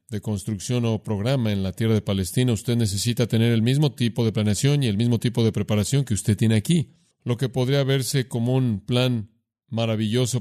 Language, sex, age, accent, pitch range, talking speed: Spanish, male, 40-59, Mexican, 110-130 Hz, 200 wpm